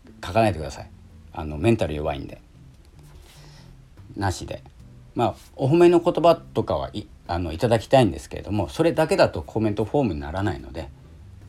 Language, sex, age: Japanese, male, 40-59